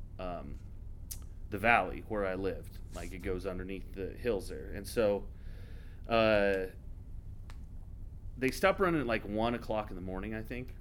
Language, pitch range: English, 90-110 Hz